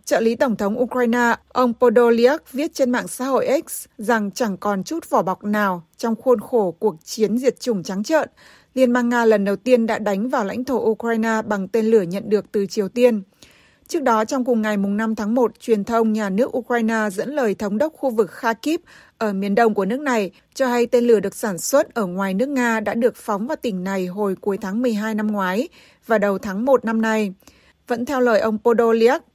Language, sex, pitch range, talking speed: Vietnamese, female, 210-250 Hz, 225 wpm